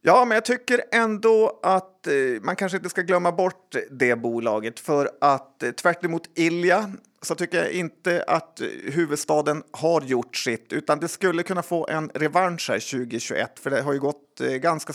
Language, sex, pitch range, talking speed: Swedish, male, 130-170 Hz, 175 wpm